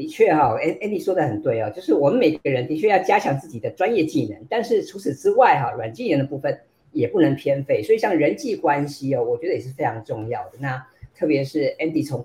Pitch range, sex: 140-190 Hz, female